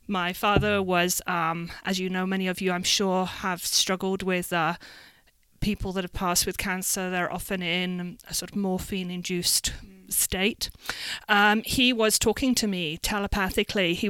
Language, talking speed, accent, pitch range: English, 160 wpm, British, 185-220 Hz